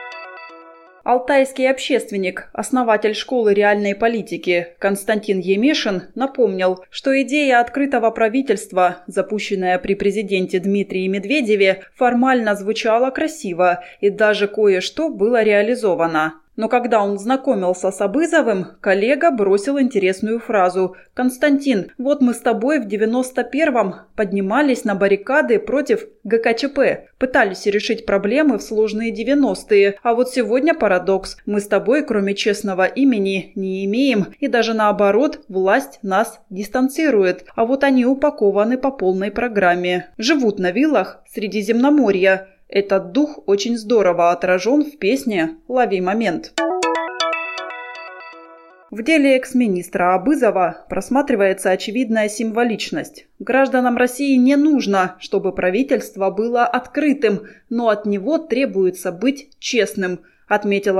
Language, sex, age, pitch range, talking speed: Russian, female, 20-39, 190-255 Hz, 110 wpm